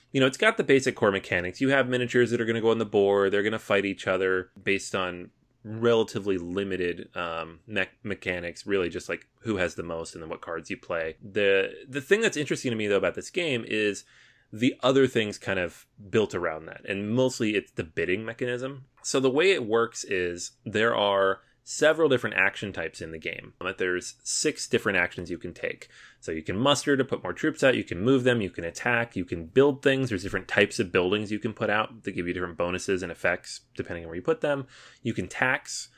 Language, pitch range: English, 95-125 Hz